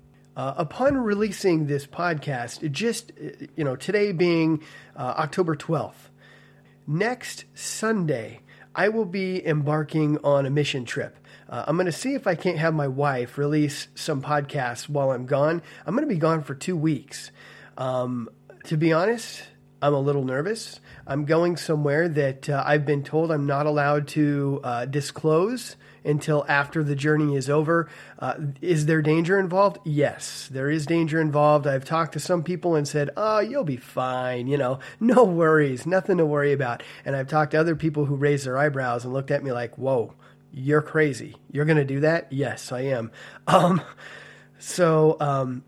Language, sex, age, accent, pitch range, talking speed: English, male, 30-49, American, 140-170 Hz, 175 wpm